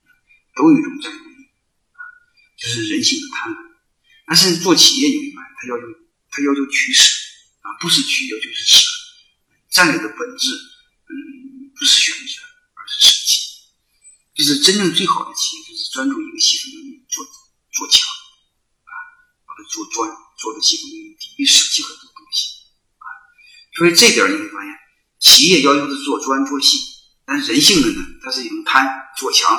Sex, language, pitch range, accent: male, Chinese, 270-410 Hz, native